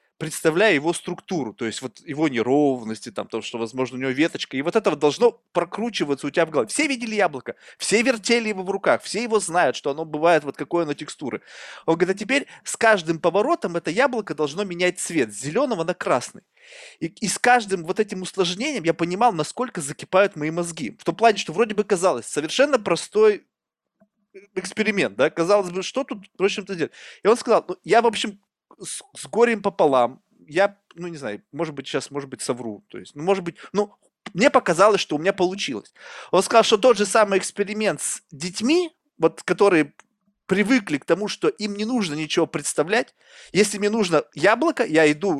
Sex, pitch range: male, 155-215 Hz